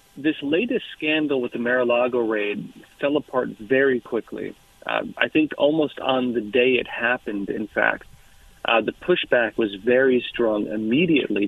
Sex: male